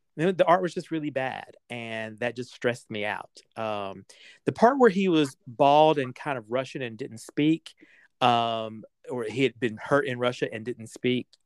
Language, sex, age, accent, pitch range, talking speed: English, male, 40-59, American, 115-145 Hz, 195 wpm